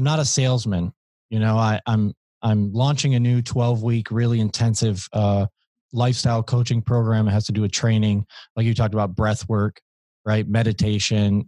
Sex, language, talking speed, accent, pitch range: male, English, 175 wpm, American, 105-120 Hz